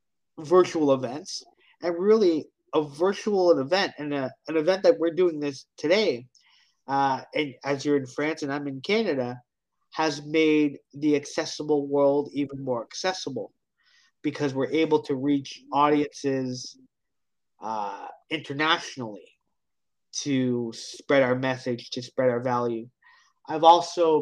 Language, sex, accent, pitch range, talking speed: English, male, American, 135-155 Hz, 125 wpm